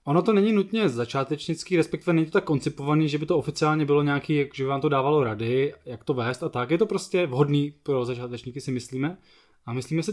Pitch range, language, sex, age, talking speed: 135-160 Hz, Czech, male, 20-39, 230 wpm